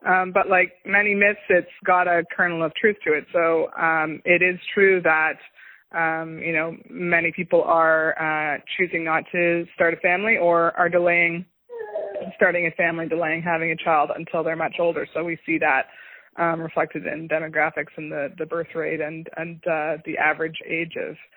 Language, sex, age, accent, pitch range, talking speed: English, female, 20-39, American, 155-175 Hz, 185 wpm